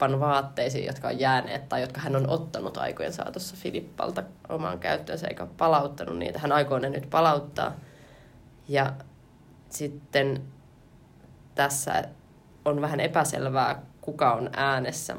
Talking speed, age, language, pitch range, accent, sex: 120 wpm, 20-39, Finnish, 135-155 Hz, native, female